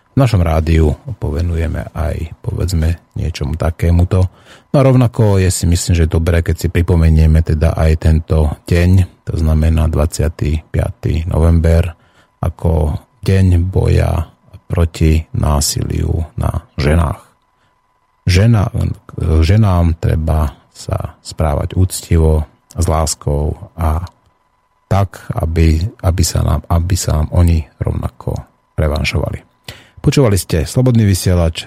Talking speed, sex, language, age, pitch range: 110 wpm, male, Slovak, 30-49, 80-100 Hz